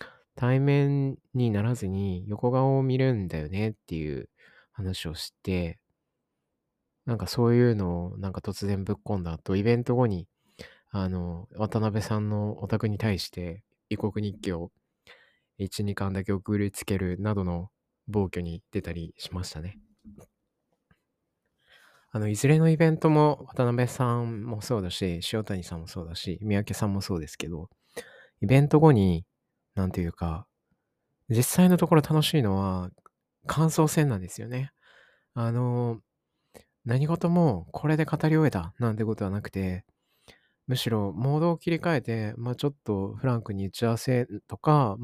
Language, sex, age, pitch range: Japanese, male, 20-39, 95-130 Hz